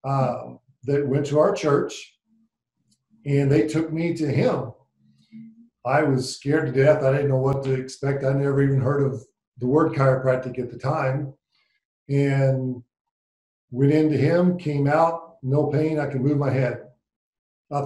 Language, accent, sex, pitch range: English, American, male, 130-155 Hz